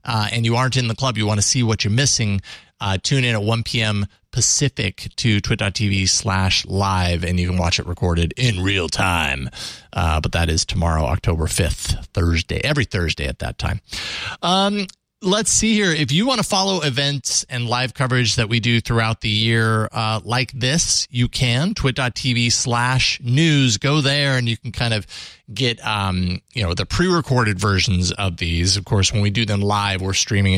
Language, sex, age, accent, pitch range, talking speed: English, male, 30-49, American, 95-130 Hz, 190 wpm